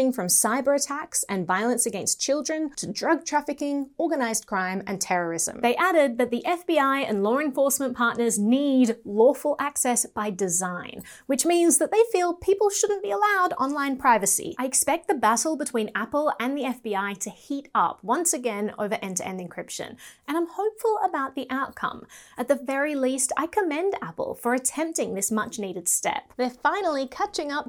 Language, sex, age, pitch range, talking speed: English, female, 30-49, 230-315 Hz, 170 wpm